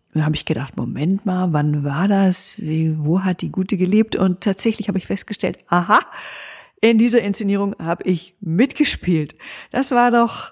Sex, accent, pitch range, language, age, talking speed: female, German, 155-190 Hz, German, 50-69, 160 wpm